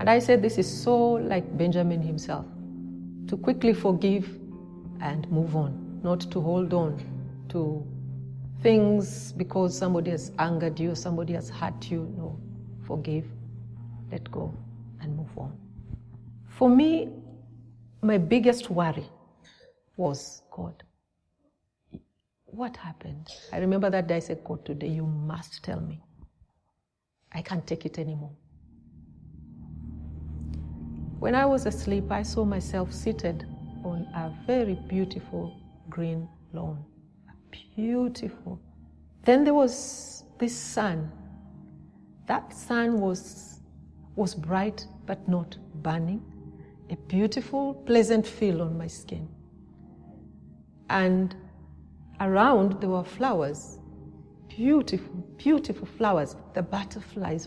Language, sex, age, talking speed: French, female, 40-59, 115 wpm